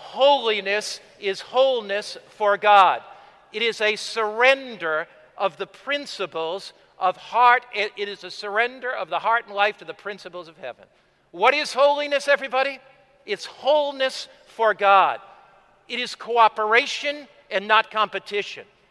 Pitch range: 205-275 Hz